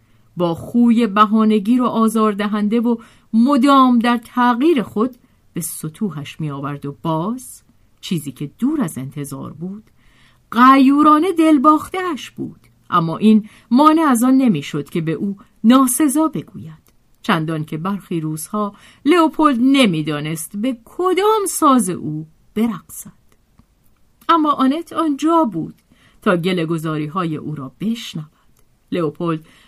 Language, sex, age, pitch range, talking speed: Persian, female, 50-69, 170-265 Hz, 120 wpm